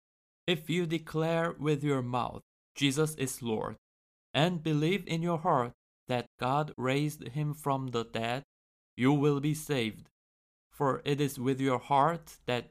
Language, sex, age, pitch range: Korean, male, 20-39, 120-155 Hz